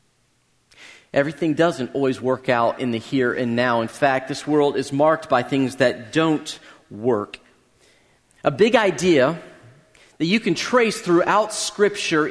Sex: male